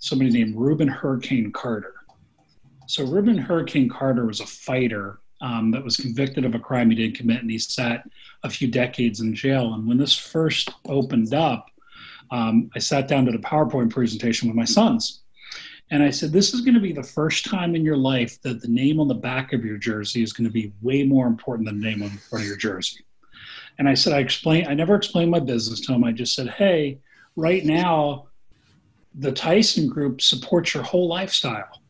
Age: 40-59